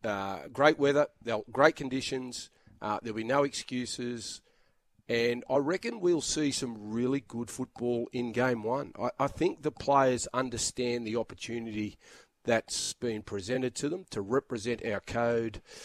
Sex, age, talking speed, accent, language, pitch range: male, 40-59, 150 wpm, Australian, English, 110-135 Hz